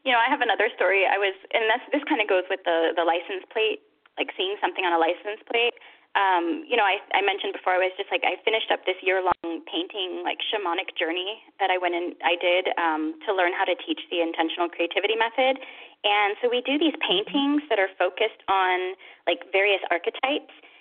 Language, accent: English, American